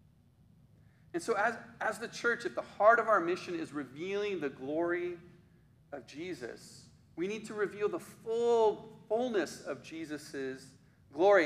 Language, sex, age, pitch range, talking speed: English, male, 40-59, 150-215 Hz, 145 wpm